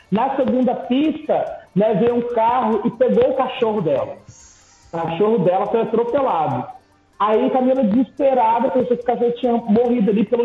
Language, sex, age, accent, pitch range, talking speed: Portuguese, male, 40-59, Brazilian, 215-255 Hz, 155 wpm